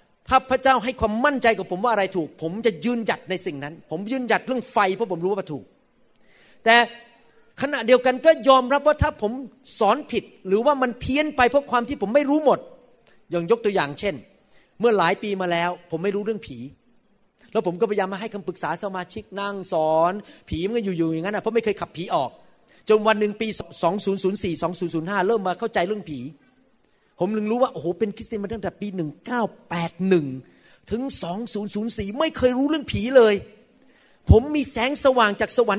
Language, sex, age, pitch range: Thai, male, 30-49, 190-250 Hz